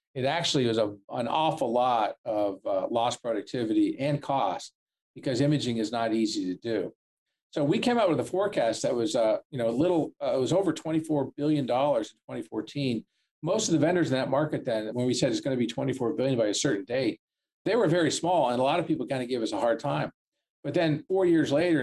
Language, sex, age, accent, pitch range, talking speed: English, male, 50-69, American, 125-150 Hz, 230 wpm